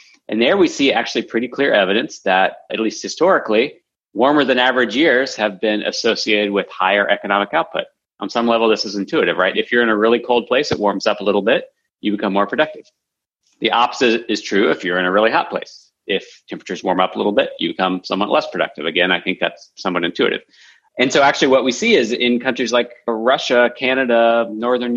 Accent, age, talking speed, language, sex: American, 30-49, 215 wpm, English, male